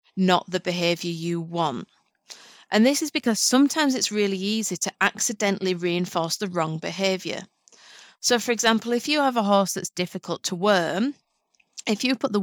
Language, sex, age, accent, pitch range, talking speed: English, female, 30-49, British, 180-220 Hz, 170 wpm